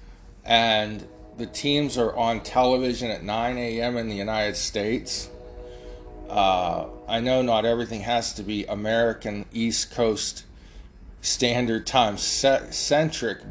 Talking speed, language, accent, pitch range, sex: 115 wpm, English, American, 90-120 Hz, male